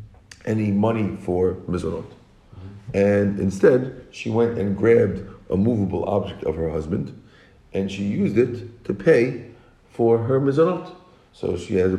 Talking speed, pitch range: 145 wpm, 100-130 Hz